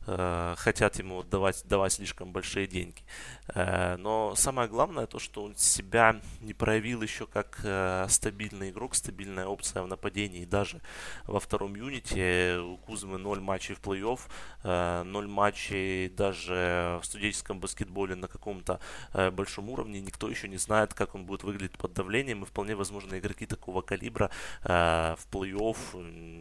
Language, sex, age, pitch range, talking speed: Russian, male, 20-39, 90-105 Hz, 140 wpm